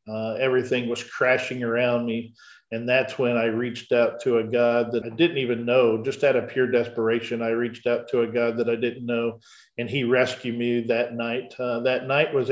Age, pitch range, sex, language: 50-69, 120-155 Hz, male, English